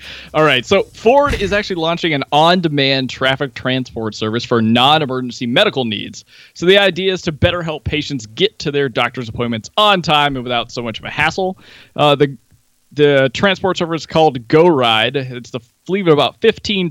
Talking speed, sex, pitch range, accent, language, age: 180 wpm, male, 125-165 Hz, American, English, 20-39